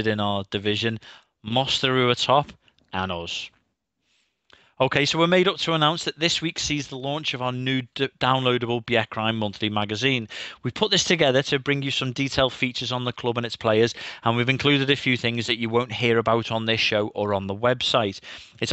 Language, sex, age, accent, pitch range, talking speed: English, male, 30-49, British, 110-130 Hz, 205 wpm